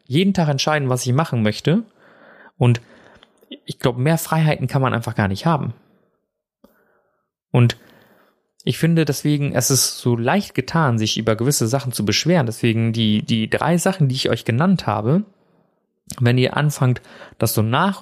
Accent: German